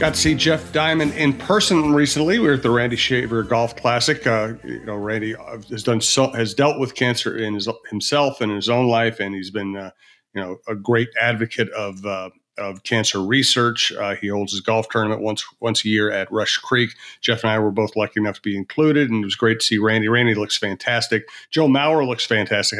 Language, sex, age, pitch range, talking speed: English, male, 40-59, 110-130 Hz, 225 wpm